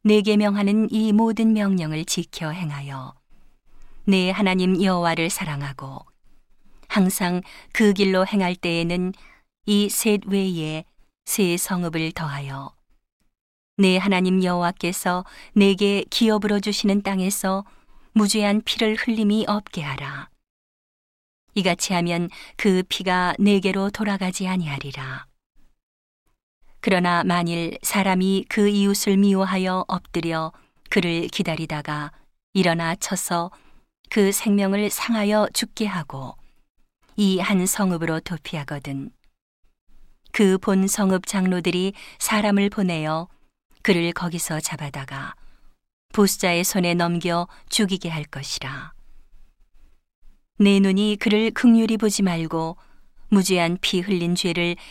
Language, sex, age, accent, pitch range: Korean, female, 40-59, native, 165-205 Hz